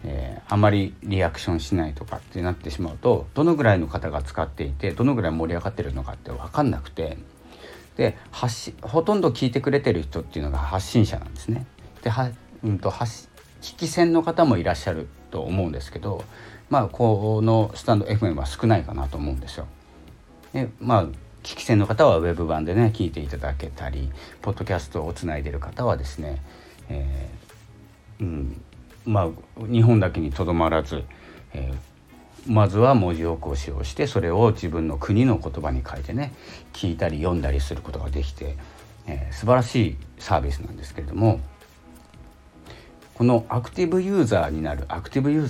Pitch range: 75-110 Hz